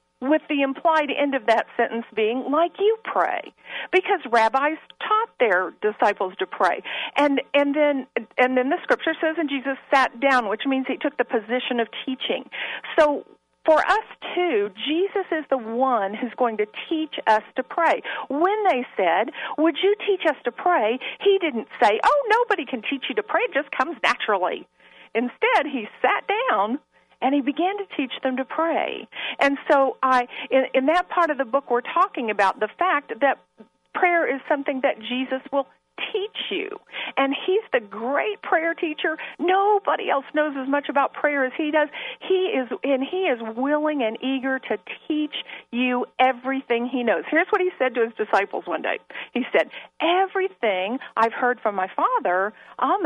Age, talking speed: 50-69, 180 wpm